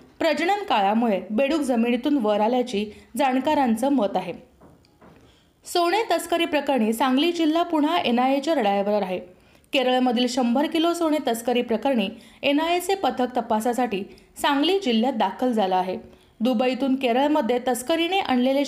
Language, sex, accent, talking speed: Marathi, female, native, 115 wpm